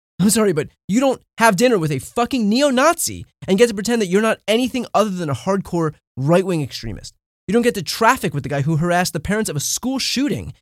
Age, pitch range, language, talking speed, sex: 20-39, 140-200 Hz, English, 230 wpm, male